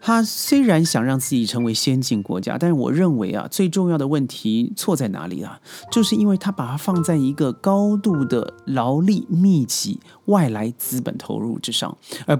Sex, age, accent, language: male, 30-49, native, Chinese